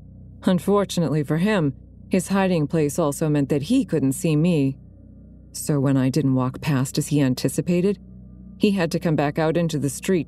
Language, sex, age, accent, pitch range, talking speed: English, female, 30-49, American, 140-175 Hz, 180 wpm